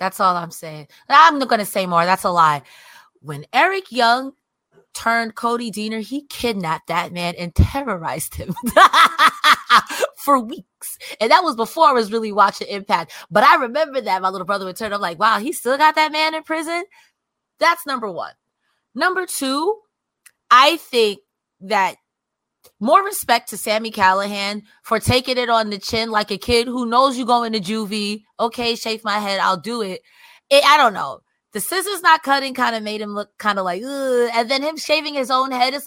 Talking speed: 195 wpm